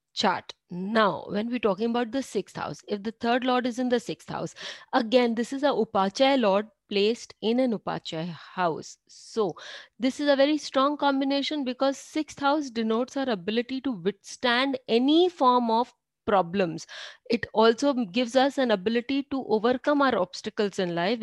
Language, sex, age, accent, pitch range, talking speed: English, female, 30-49, Indian, 205-260 Hz, 170 wpm